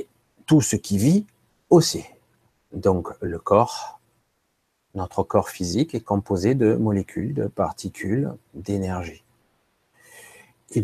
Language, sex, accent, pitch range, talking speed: French, male, French, 95-125 Hz, 105 wpm